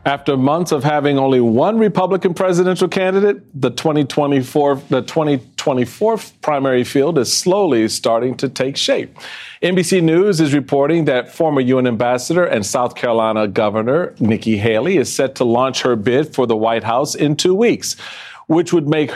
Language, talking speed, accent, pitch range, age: English, 155 wpm, American, 130-180 Hz, 40-59